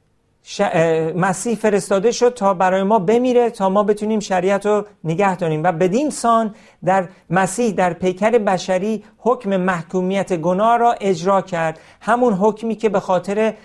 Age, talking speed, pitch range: 50-69, 150 wpm, 160-215 Hz